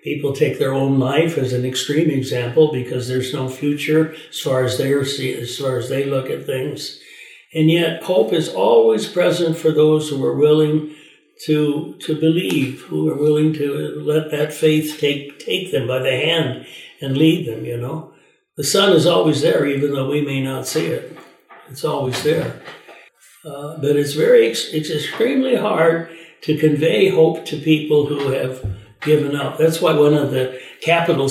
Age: 60-79